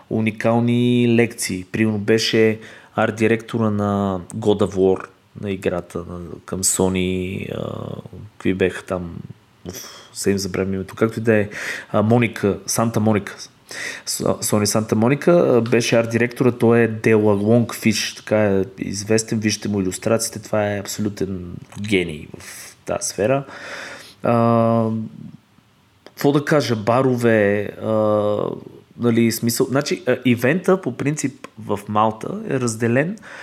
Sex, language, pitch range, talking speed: male, Bulgarian, 105-120 Hz, 110 wpm